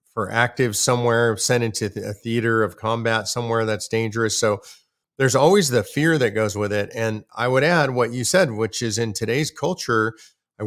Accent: American